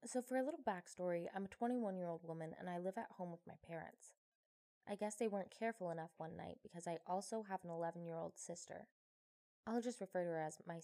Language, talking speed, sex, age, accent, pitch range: English, 215 wpm, female, 20-39, American, 175-225 Hz